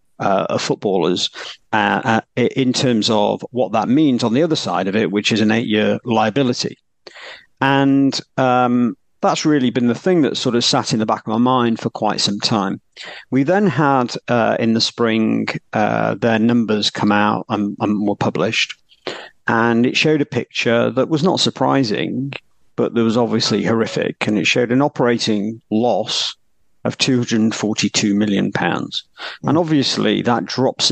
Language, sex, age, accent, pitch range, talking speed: English, male, 50-69, British, 105-135 Hz, 170 wpm